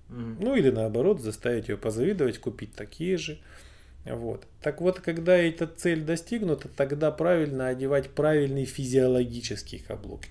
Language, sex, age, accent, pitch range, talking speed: Russian, male, 20-39, native, 105-145 Hz, 120 wpm